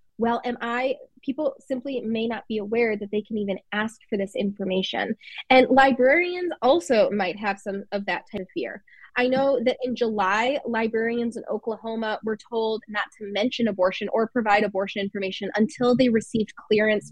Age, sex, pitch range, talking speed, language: 20-39, female, 205-250 Hz, 175 wpm, English